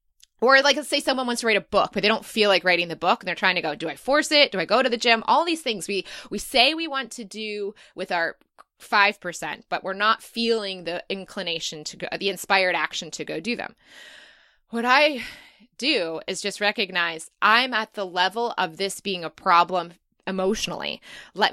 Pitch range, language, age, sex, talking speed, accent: 180-230 Hz, English, 20-39, female, 215 wpm, American